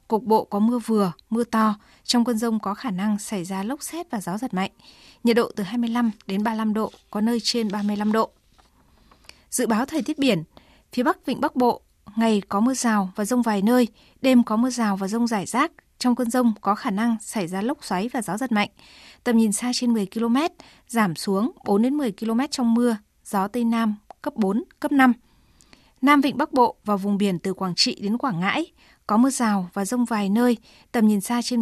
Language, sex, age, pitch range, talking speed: Vietnamese, female, 20-39, 210-250 Hz, 225 wpm